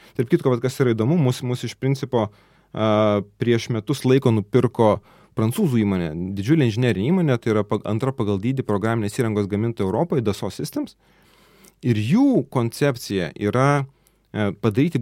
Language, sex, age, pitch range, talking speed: English, male, 30-49, 105-140 Hz, 135 wpm